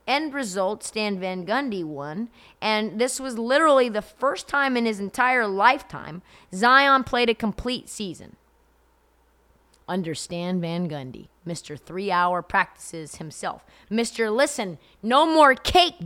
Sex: female